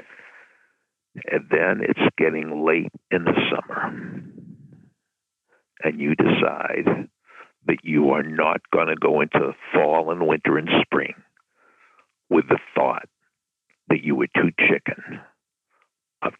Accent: American